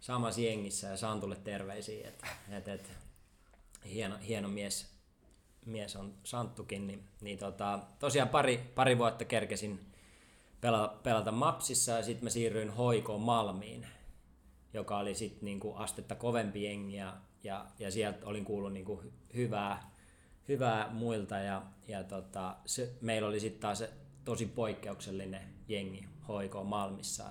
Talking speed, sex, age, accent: 130 wpm, male, 20-39, native